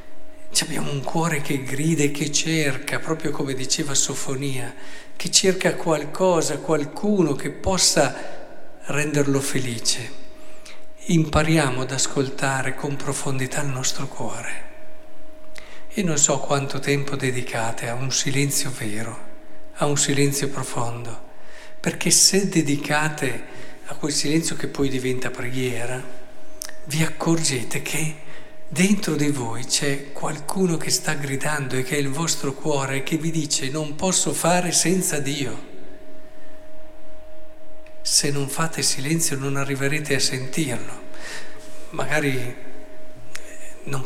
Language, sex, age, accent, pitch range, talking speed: Italian, male, 50-69, native, 135-170 Hz, 120 wpm